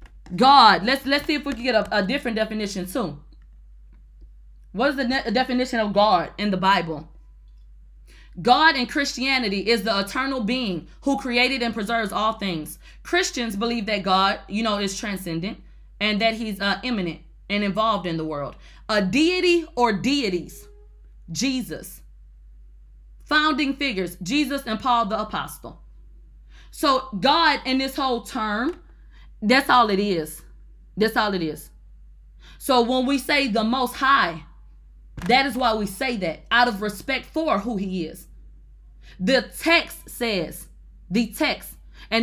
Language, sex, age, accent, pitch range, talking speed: English, female, 20-39, American, 165-265 Hz, 150 wpm